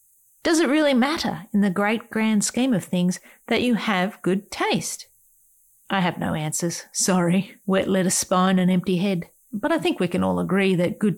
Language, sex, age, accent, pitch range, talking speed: English, female, 40-59, Australian, 180-230 Hz, 190 wpm